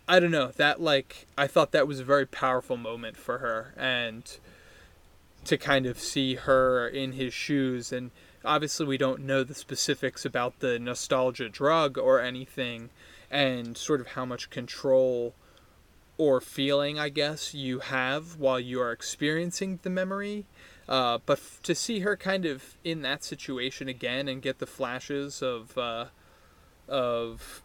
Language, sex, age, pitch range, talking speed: English, male, 30-49, 120-145 Hz, 160 wpm